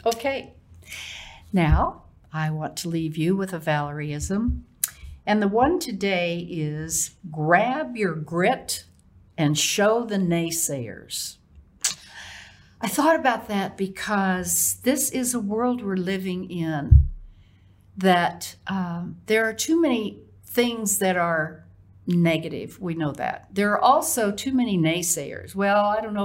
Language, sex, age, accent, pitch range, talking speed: English, female, 60-79, American, 155-225 Hz, 130 wpm